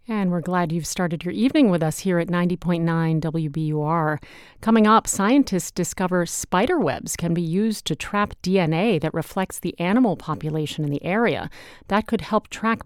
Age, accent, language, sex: 40-59, American, English, female